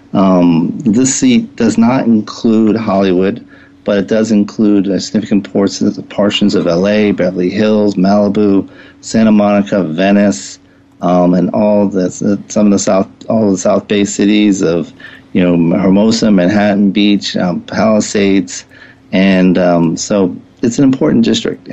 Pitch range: 95-115 Hz